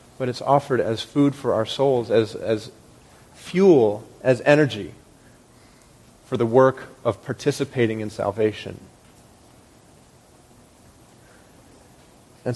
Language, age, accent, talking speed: English, 40-59, American, 100 wpm